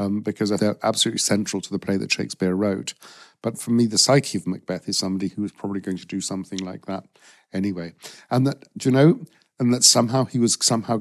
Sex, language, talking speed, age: male, English, 225 wpm, 50-69